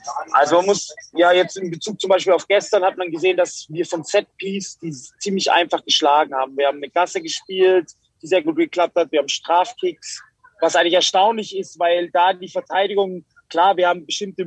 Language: German